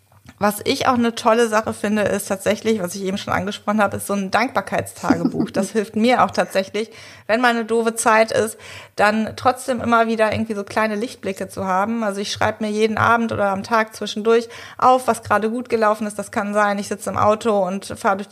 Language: German